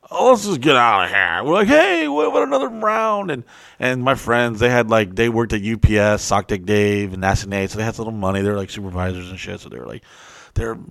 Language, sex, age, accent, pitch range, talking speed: English, male, 30-49, American, 105-170 Hz, 240 wpm